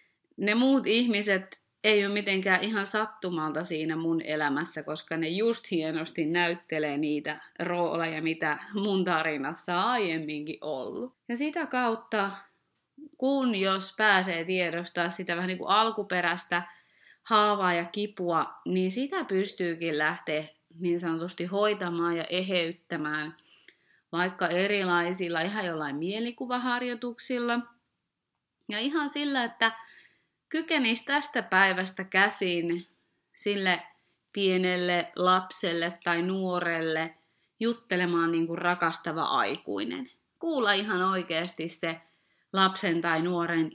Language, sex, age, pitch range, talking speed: Finnish, female, 20-39, 165-210 Hz, 105 wpm